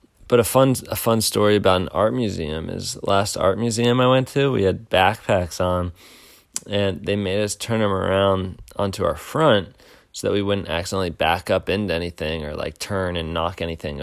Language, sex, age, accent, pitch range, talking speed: English, male, 20-39, American, 95-120 Hz, 200 wpm